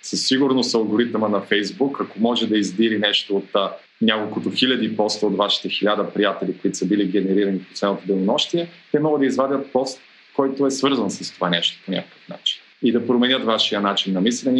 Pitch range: 100-135 Hz